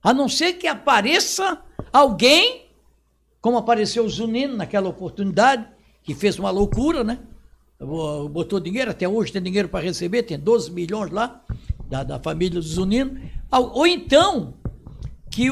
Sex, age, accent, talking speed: male, 60-79, Brazilian, 145 wpm